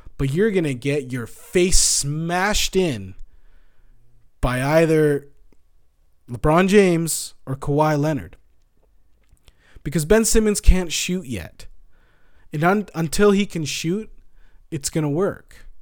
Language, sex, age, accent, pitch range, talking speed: English, male, 20-39, American, 125-170 Hz, 120 wpm